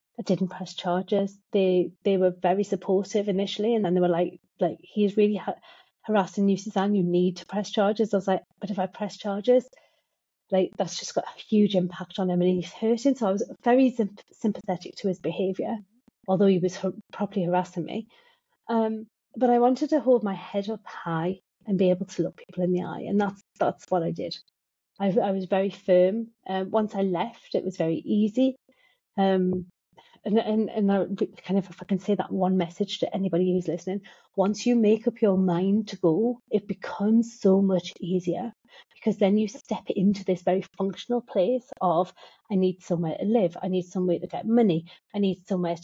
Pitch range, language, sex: 185-220 Hz, English, female